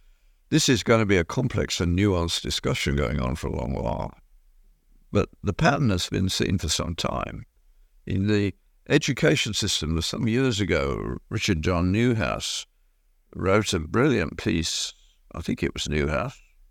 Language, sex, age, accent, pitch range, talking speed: English, male, 60-79, British, 80-110 Hz, 155 wpm